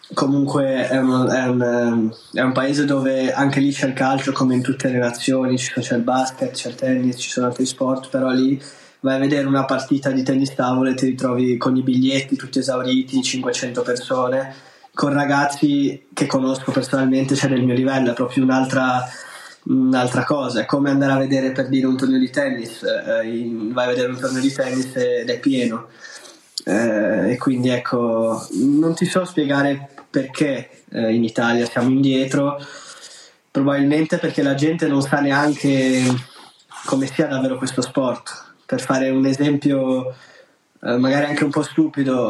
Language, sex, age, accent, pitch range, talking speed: Italian, male, 20-39, native, 130-145 Hz, 170 wpm